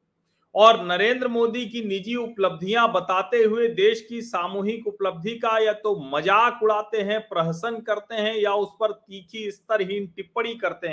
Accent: native